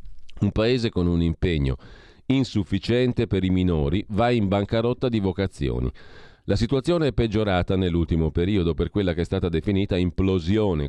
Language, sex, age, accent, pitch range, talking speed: Italian, male, 40-59, native, 85-115 Hz, 150 wpm